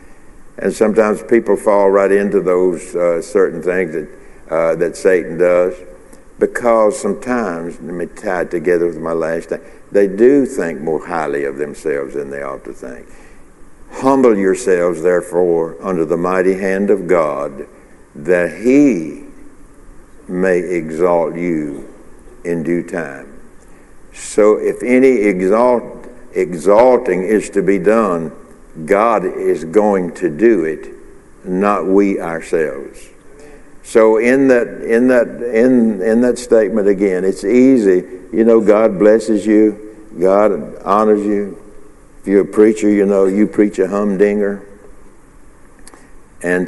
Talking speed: 135 wpm